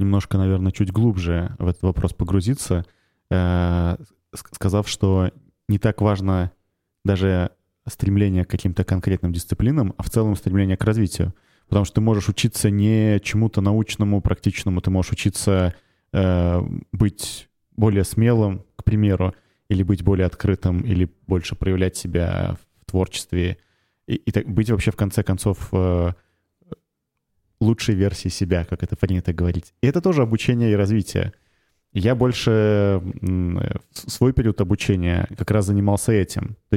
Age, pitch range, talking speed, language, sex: 20-39, 90-110 Hz, 140 wpm, Russian, male